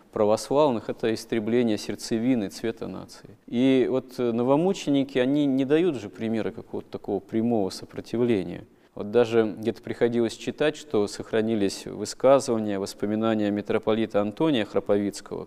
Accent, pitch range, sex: native, 100-115 Hz, male